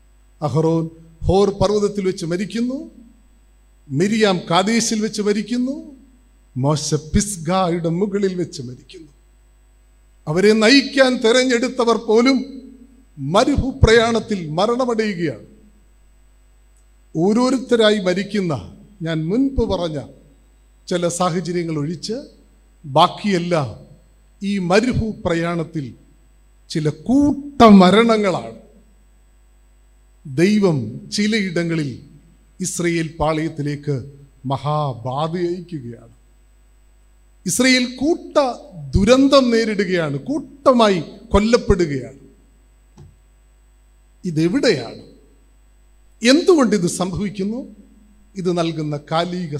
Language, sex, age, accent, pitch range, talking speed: Malayalam, male, 50-69, native, 150-220 Hz, 65 wpm